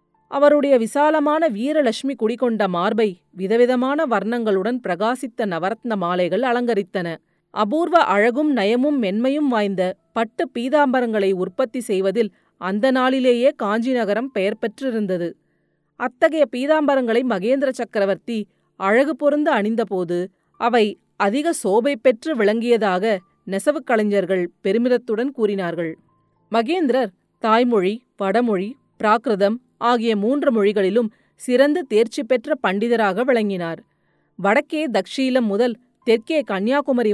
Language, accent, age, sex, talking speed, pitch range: Tamil, native, 30-49, female, 95 wpm, 200-265 Hz